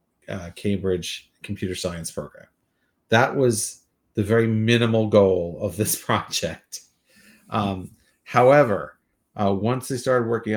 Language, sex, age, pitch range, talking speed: English, male, 40-59, 100-115 Hz, 120 wpm